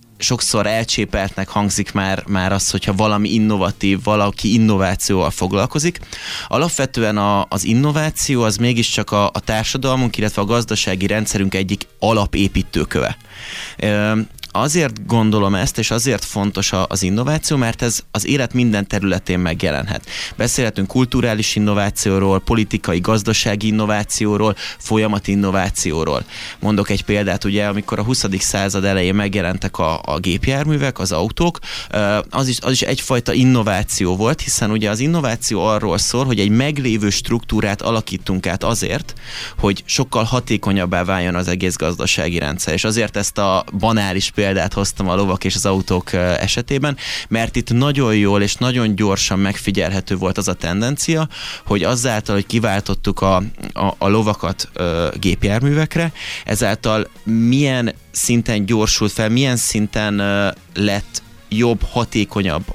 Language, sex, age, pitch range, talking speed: Hungarian, male, 20-39, 95-115 Hz, 130 wpm